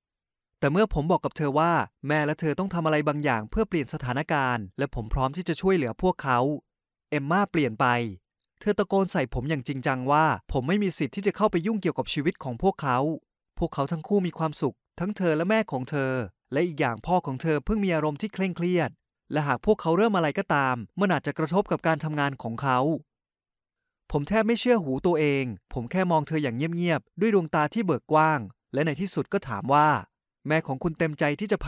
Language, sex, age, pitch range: Thai, male, 20-39, 135-180 Hz